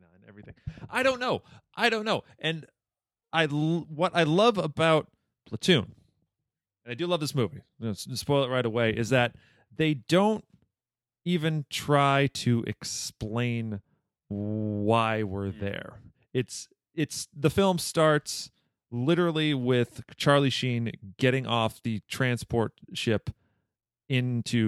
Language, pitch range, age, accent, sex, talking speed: English, 110-140 Hz, 30-49, American, male, 120 wpm